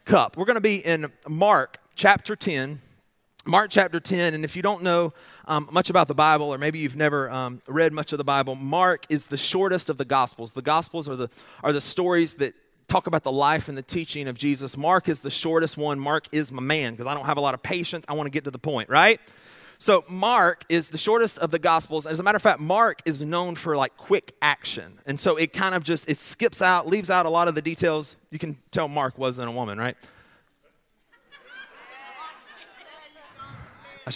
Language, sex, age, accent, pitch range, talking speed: English, male, 30-49, American, 140-185 Hz, 220 wpm